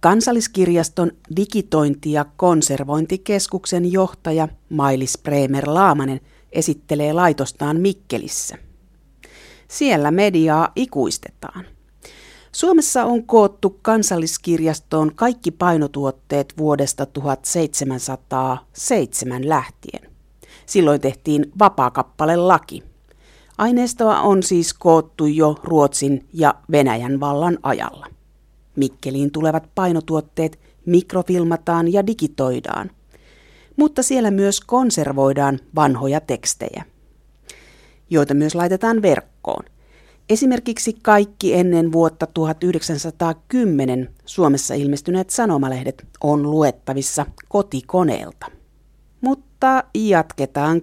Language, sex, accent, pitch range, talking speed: Finnish, female, native, 140-185 Hz, 80 wpm